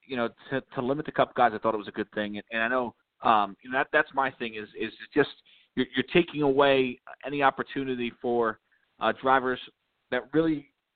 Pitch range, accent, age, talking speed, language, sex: 120-145 Hz, American, 30-49, 220 wpm, English, male